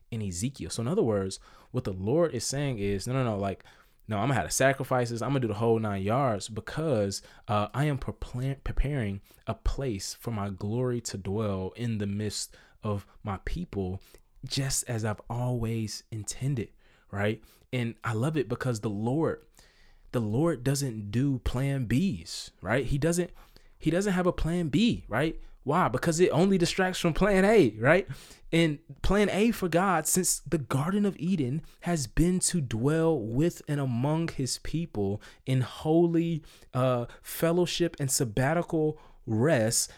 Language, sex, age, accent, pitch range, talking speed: English, male, 20-39, American, 110-160 Hz, 170 wpm